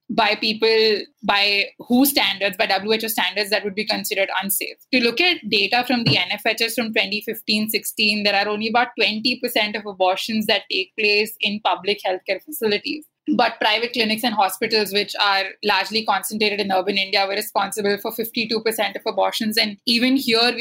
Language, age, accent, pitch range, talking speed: English, 20-39, Indian, 195-230 Hz, 170 wpm